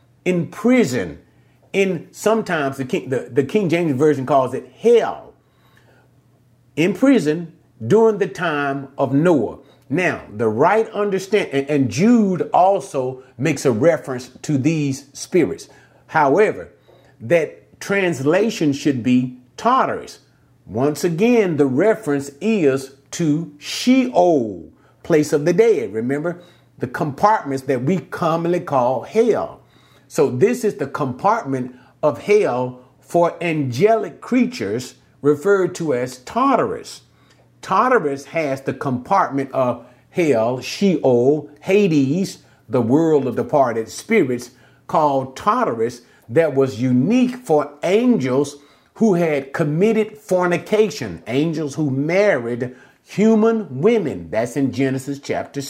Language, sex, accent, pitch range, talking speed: English, male, American, 135-200 Hz, 115 wpm